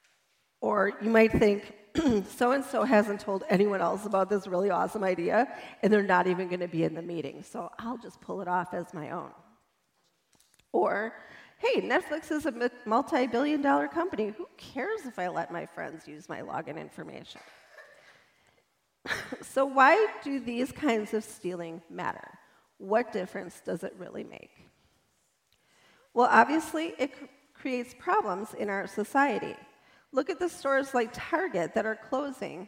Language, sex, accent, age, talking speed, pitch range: English, female, American, 40-59, 150 wpm, 195-275 Hz